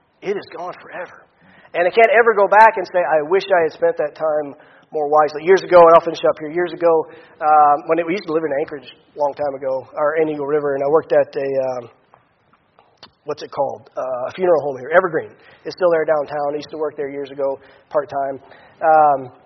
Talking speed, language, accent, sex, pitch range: 225 wpm, English, American, male, 145-175 Hz